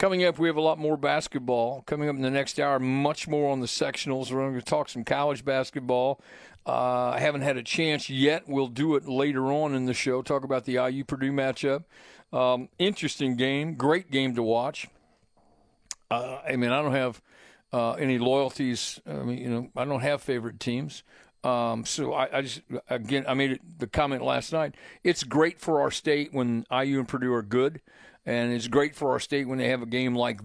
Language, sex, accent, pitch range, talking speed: English, male, American, 125-150 Hz, 215 wpm